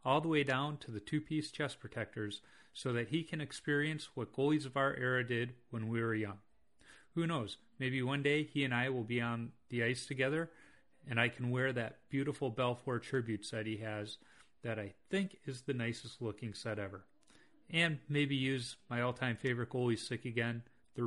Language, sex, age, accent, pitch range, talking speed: English, male, 40-59, American, 115-150 Hz, 195 wpm